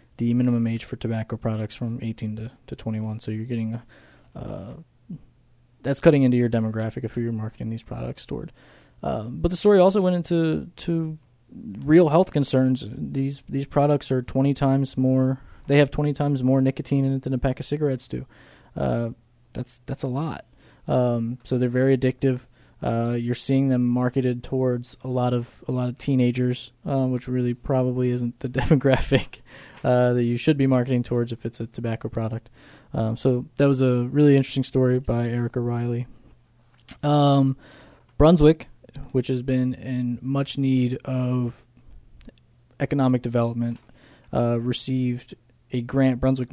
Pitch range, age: 120-135 Hz, 20-39